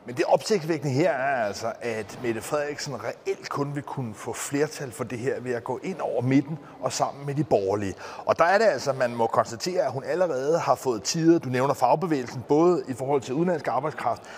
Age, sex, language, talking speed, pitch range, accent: 30-49, male, Danish, 220 wpm, 140-180 Hz, native